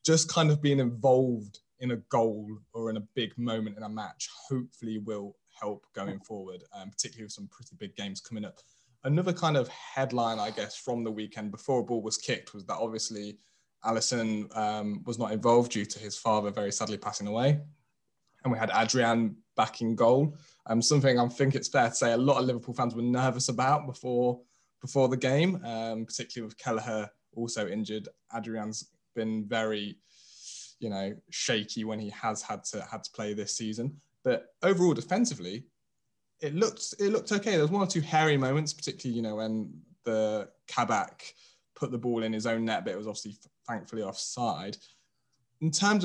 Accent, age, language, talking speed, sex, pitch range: British, 20-39, English, 190 wpm, male, 110-140 Hz